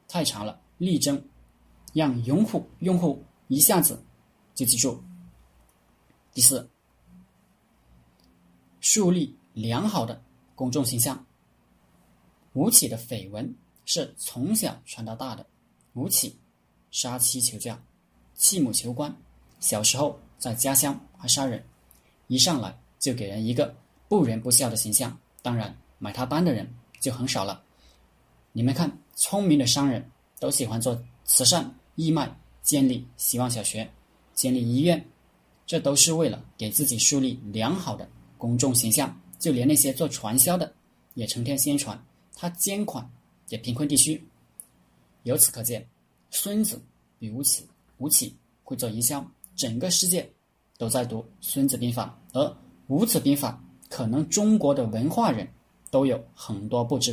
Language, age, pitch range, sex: Chinese, 20-39, 100-140 Hz, male